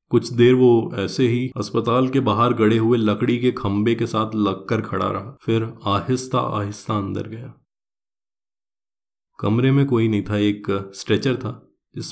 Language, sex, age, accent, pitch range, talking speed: Hindi, male, 20-39, native, 105-120 Hz, 160 wpm